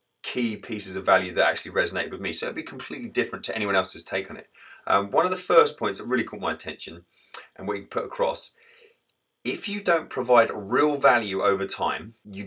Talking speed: 215 wpm